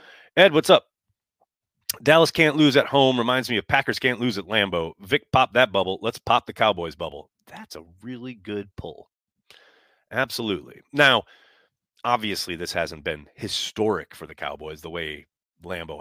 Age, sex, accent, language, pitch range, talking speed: 30-49, male, American, English, 85-125 Hz, 160 wpm